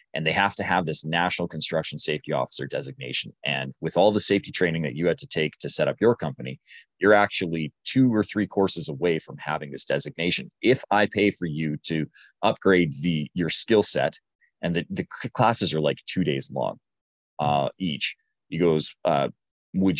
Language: English